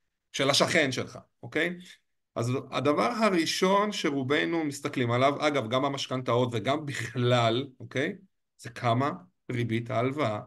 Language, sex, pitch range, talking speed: Hebrew, male, 130-190 Hz, 115 wpm